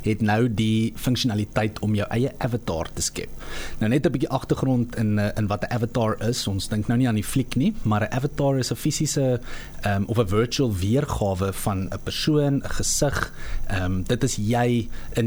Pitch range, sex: 100-120 Hz, male